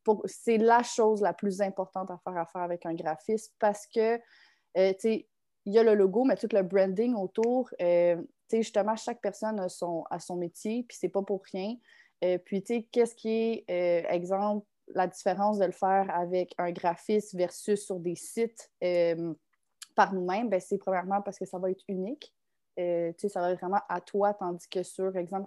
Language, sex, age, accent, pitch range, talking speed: French, female, 20-39, Canadian, 180-215 Hz, 210 wpm